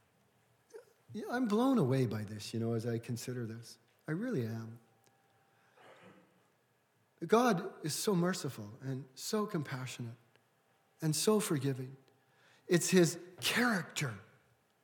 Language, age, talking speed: English, 40-59, 115 wpm